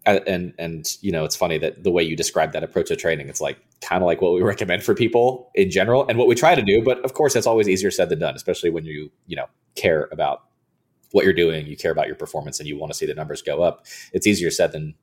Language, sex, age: English, male, 20-39